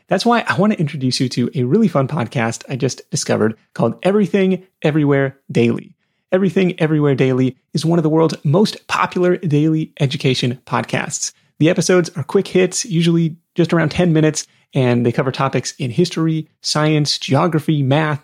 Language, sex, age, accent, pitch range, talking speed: English, male, 30-49, American, 130-180 Hz, 170 wpm